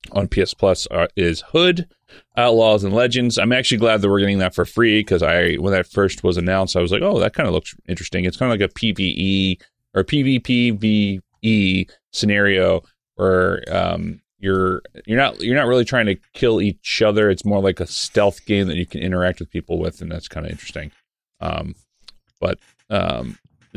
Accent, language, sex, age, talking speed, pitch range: American, English, male, 30-49, 200 wpm, 90-120 Hz